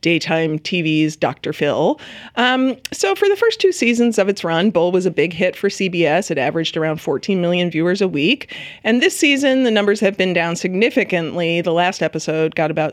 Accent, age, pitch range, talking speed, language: American, 40-59, 165-215 Hz, 200 wpm, English